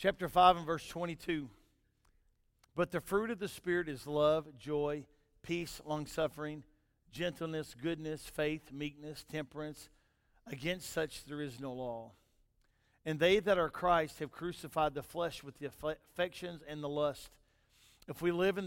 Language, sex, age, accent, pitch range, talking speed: English, male, 50-69, American, 130-160 Hz, 150 wpm